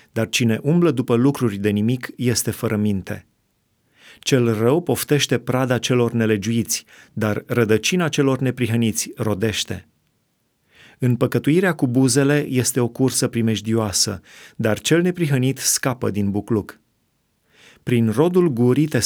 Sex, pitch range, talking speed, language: male, 110-130 Hz, 120 wpm, Romanian